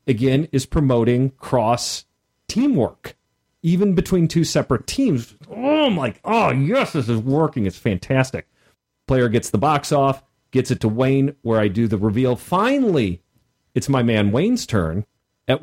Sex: male